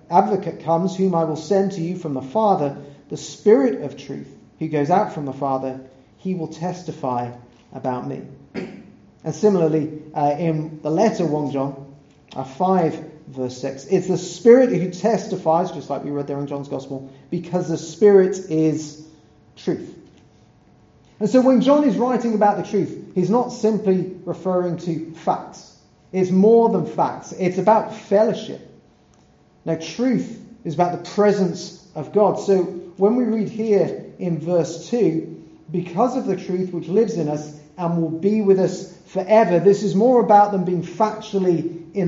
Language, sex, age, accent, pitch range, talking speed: English, male, 40-59, British, 145-190 Hz, 165 wpm